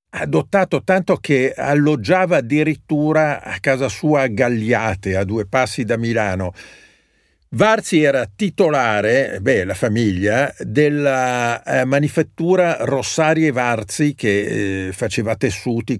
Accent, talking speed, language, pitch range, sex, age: native, 115 wpm, Italian, 115-155 Hz, male, 50-69